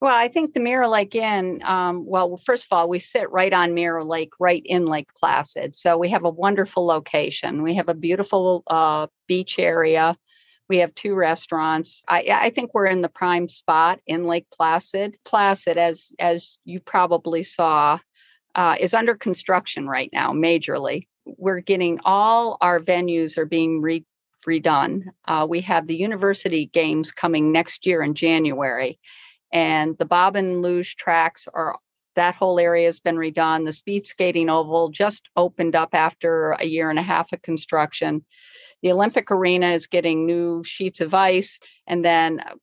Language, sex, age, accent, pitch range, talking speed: English, female, 50-69, American, 165-190 Hz, 175 wpm